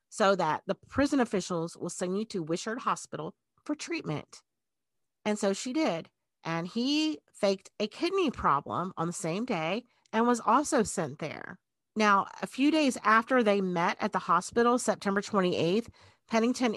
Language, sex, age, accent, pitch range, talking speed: English, female, 40-59, American, 175-225 Hz, 160 wpm